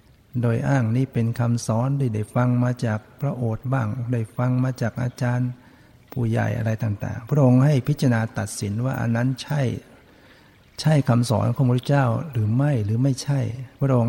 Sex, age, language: male, 60-79, Thai